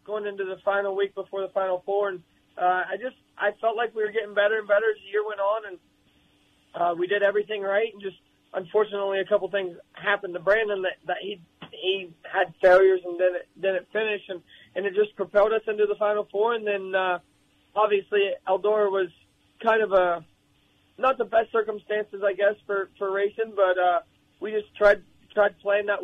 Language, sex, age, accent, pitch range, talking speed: English, male, 20-39, American, 190-220 Hz, 210 wpm